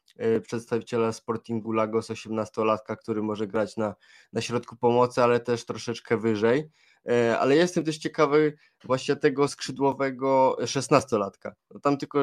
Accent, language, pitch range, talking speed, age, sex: native, Polish, 115-125 Hz, 125 wpm, 20-39, male